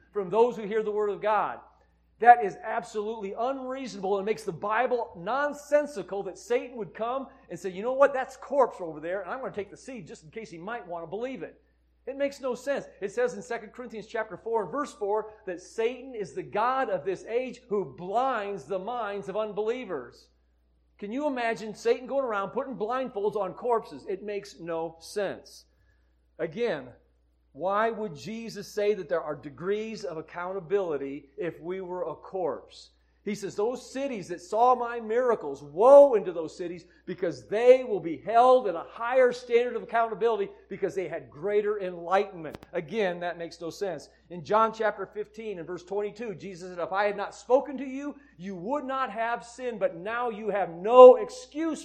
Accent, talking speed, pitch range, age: American, 190 wpm, 185-250 Hz, 40-59